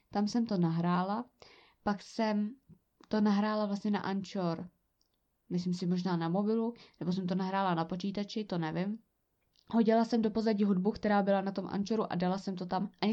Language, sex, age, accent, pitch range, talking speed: Czech, female, 20-39, native, 185-230 Hz, 185 wpm